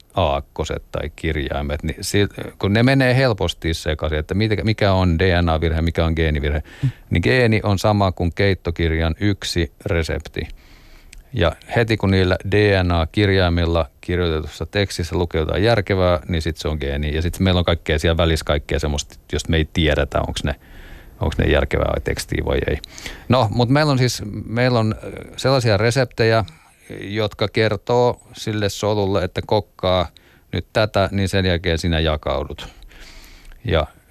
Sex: male